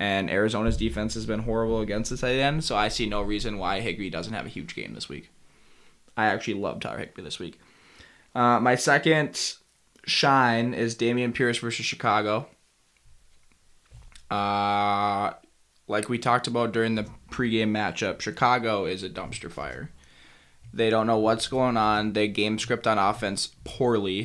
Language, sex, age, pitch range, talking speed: English, male, 10-29, 100-115 Hz, 165 wpm